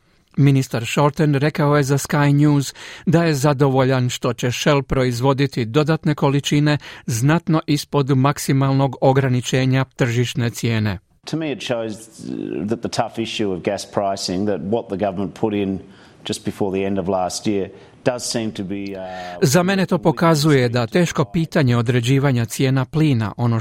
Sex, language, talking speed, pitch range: male, Croatian, 125 wpm, 125-150 Hz